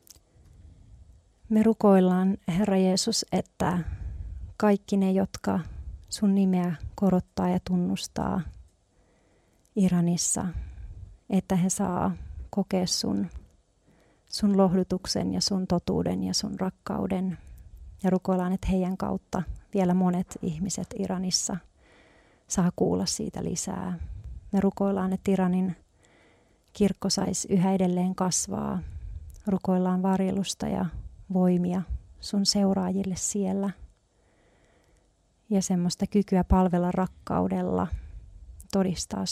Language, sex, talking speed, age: Finnish, female, 95 wpm, 40-59